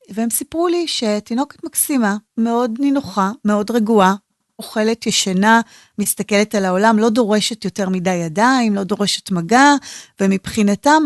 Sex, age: female, 30-49